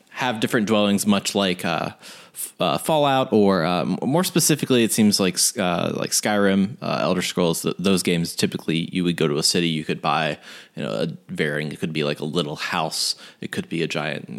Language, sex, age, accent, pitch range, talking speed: English, male, 30-49, American, 90-125 Hz, 210 wpm